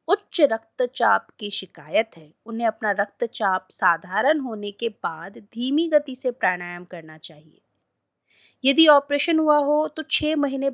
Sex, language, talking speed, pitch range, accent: female, Hindi, 140 wpm, 180-275 Hz, native